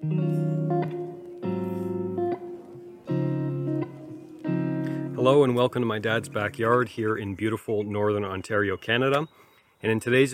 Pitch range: 105-130 Hz